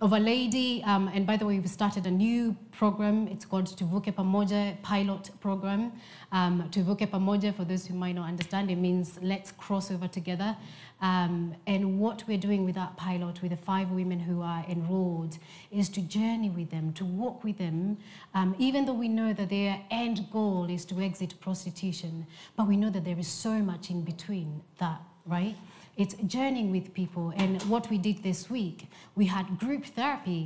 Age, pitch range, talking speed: 30-49, 175-205 Hz, 190 wpm